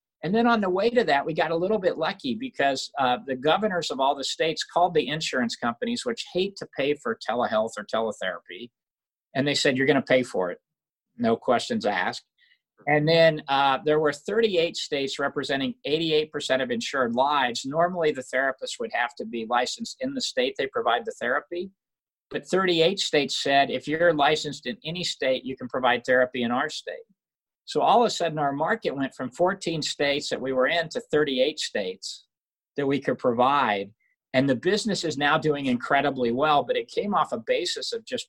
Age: 50-69